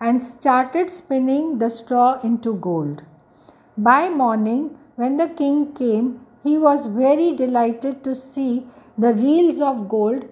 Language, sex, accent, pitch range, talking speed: English, female, Indian, 230-285 Hz, 135 wpm